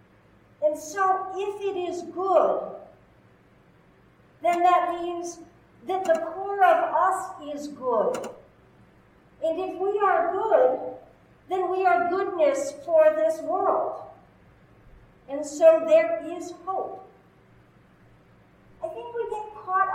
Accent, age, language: American, 50-69, English